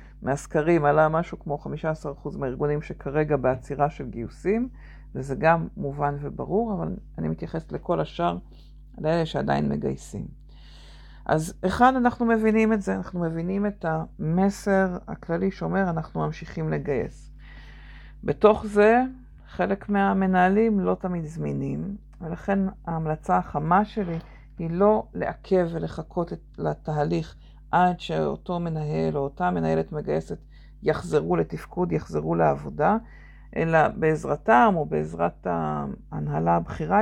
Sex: female